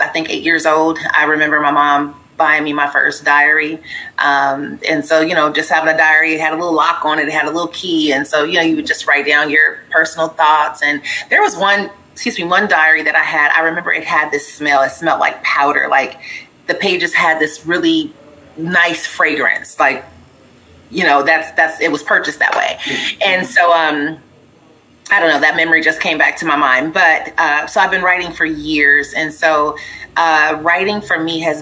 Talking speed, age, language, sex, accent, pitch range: 220 wpm, 30-49, English, female, American, 150-170 Hz